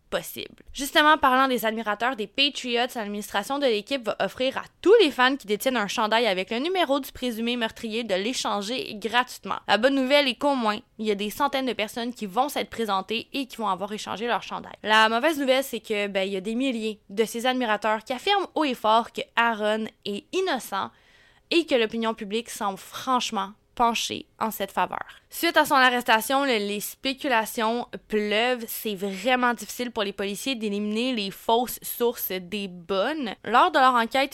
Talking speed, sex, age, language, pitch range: 190 wpm, female, 20-39, French, 205-260 Hz